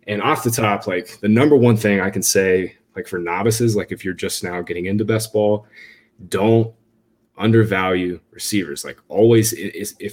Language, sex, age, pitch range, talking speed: English, male, 20-39, 100-115 Hz, 180 wpm